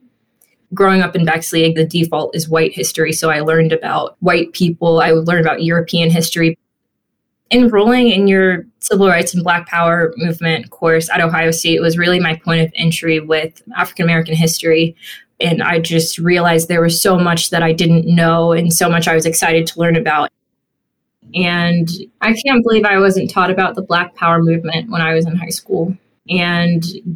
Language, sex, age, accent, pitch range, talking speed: English, female, 20-39, American, 165-180 Hz, 185 wpm